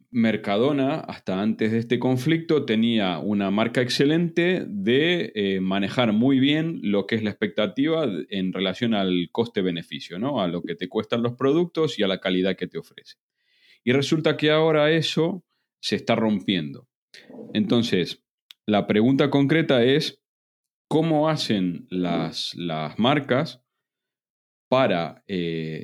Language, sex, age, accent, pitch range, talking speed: Spanish, male, 30-49, Argentinian, 100-145 Hz, 135 wpm